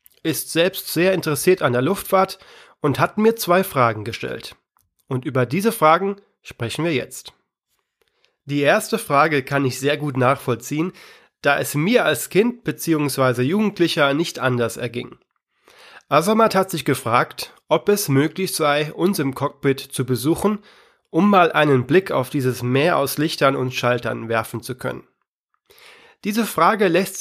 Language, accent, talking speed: German, German, 150 wpm